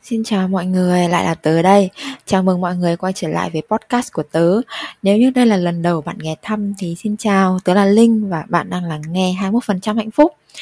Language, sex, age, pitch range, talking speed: Vietnamese, female, 20-39, 175-235 Hz, 250 wpm